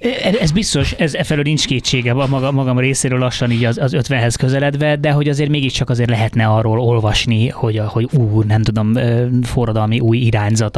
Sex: male